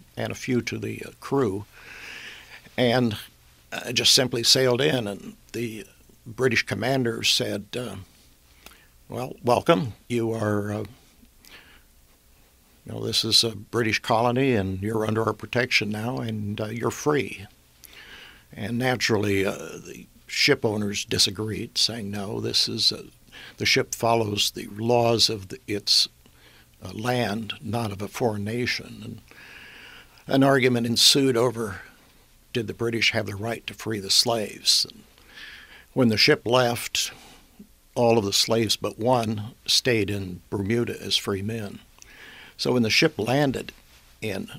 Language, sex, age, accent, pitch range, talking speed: English, male, 60-79, American, 100-120 Hz, 140 wpm